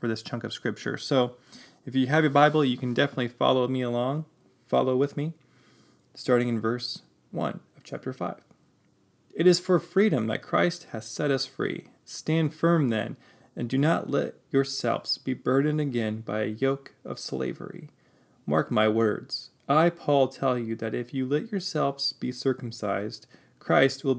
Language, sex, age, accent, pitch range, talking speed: English, male, 20-39, American, 120-150 Hz, 170 wpm